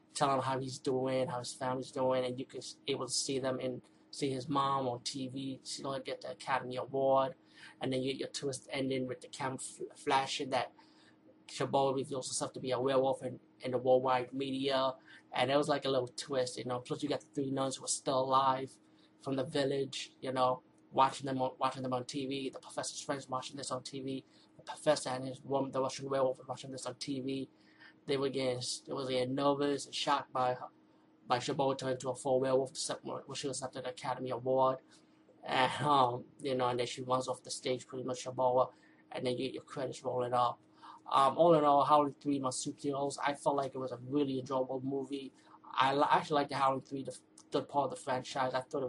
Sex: male